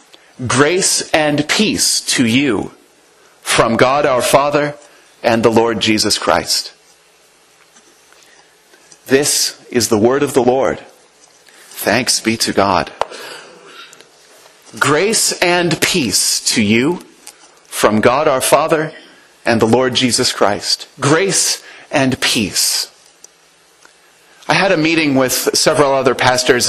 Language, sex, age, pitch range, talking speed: English, male, 30-49, 110-145 Hz, 110 wpm